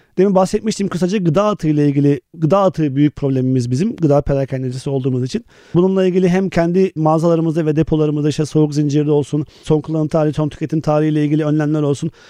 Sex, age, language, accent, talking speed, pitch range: male, 40-59, Turkish, native, 185 wpm, 145-180 Hz